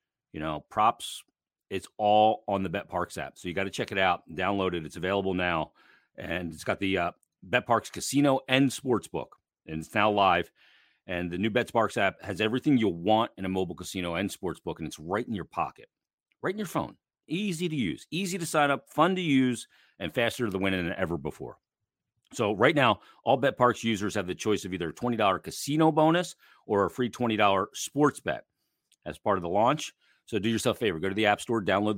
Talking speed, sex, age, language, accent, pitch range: 220 wpm, male, 40-59, English, American, 90-120 Hz